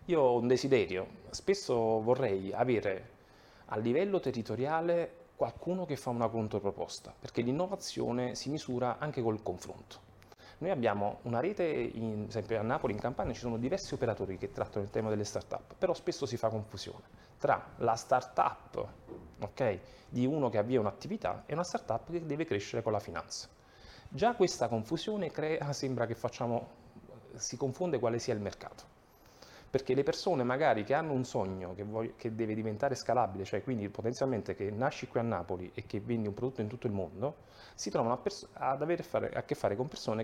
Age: 30-49